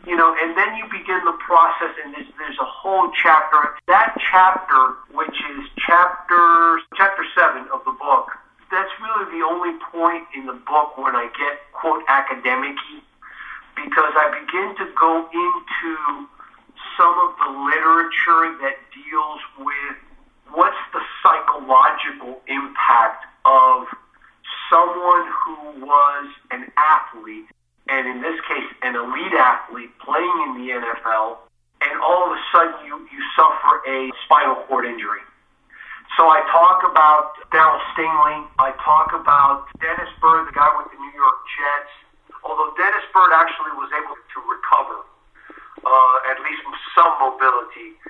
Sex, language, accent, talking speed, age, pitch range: male, English, American, 140 wpm, 50-69, 135-175 Hz